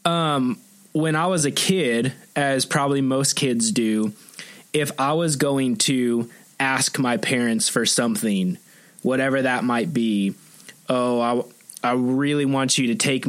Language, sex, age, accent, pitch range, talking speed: English, male, 20-39, American, 120-145 Hz, 155 wpm